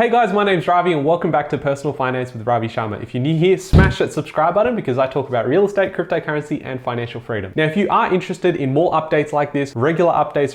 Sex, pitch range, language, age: male, 130-170 Hz, English, 20-39